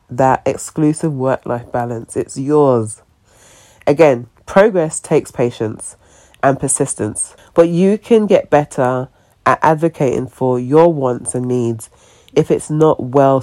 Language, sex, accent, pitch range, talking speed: English, female, British, 120-155 Hz, 125 wpm